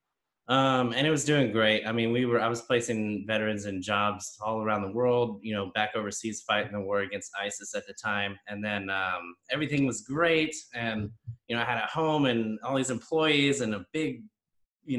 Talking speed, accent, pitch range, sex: 210 wpm, American, 110-130 Hz, male